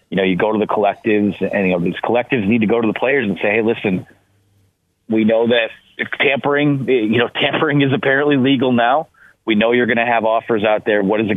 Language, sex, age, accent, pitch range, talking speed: English, male, 30-49, American, 105-140 Hz, 240 wpm